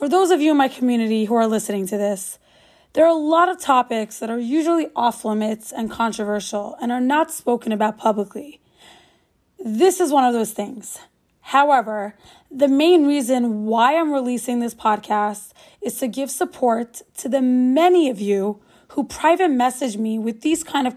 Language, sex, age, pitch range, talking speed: English, female, 20-39, 225-285 Hz, 175 wpm